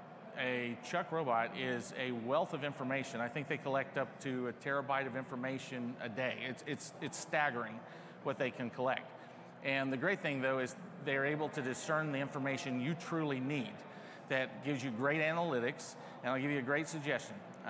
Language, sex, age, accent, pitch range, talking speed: English, male, 40-59, American, 135-160 Hz, 185 wpm